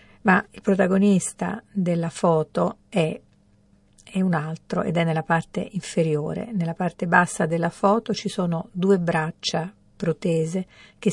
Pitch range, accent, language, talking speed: 170-200 Hz, native, Italian, 135 wpm